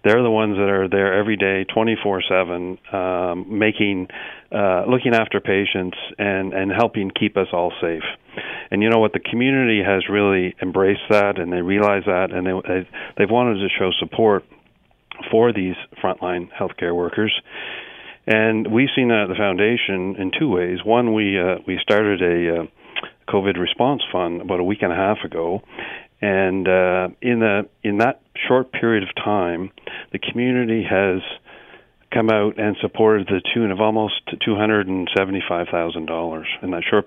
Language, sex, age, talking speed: English, male, 40-59, 160 wpm